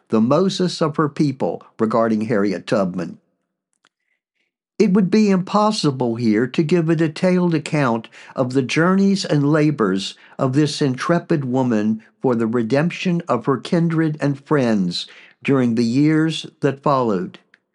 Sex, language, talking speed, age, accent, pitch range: male, English, 135 wpm, 60-79, American, 130-170 Hz